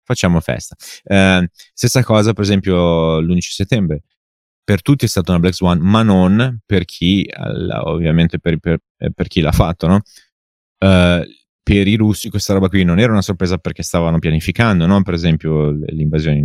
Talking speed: 165 wpm